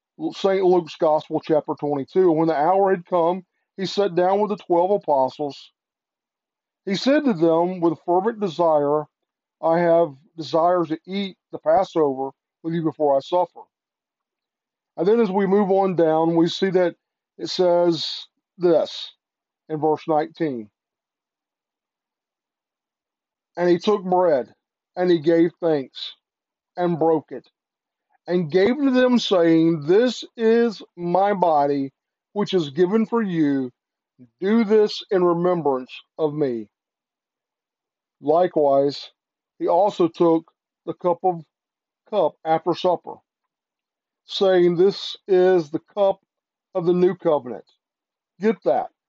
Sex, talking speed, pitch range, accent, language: male, 125 wpm, 155-190 Hz, American, English